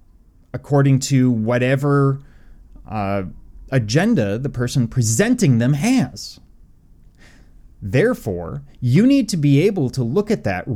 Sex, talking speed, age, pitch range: male, 110 wpm, 30-49, 105-170 Hz